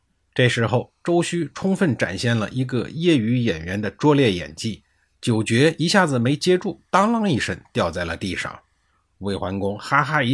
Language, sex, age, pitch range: Chinese, male, 50-69, 100-150 Hz